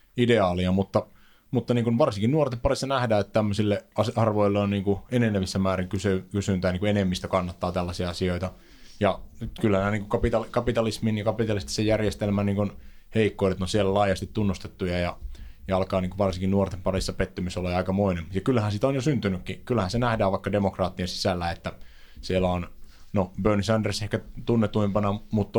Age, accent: 20-39, native